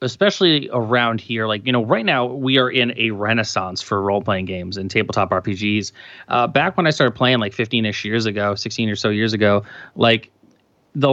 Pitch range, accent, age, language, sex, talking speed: 110-140 Hz, American, 30-49, English, male, 200 wpm